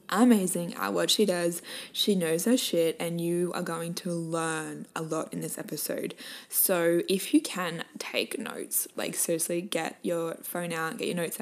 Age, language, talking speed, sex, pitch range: 10-29, English, 185 wpm, female, 170-215 Hz